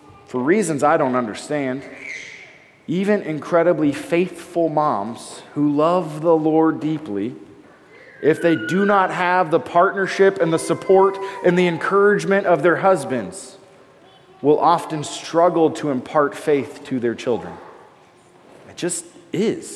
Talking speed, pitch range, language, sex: 125 wpm, 150-210 Hz, English, male